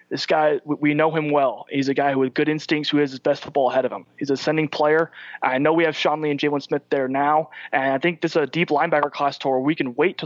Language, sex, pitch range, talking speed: English, male, 135-155 Hz, 300 wpm